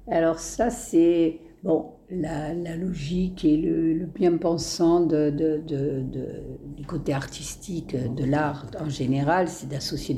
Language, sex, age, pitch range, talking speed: French, female, 60-79, 155-215 Hz, 120 wpm